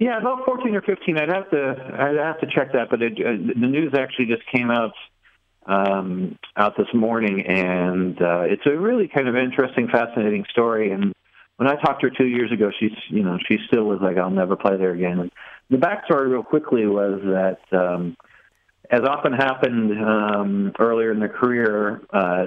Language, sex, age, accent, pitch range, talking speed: English, male, 50-69, American, 90-120 Hz, 195 wpm